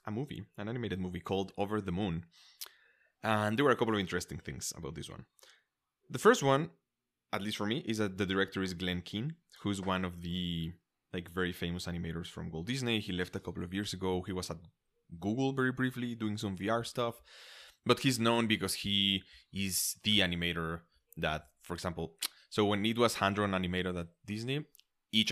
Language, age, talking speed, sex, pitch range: English, 20-39, 195 wpm, male, 85-105 Hz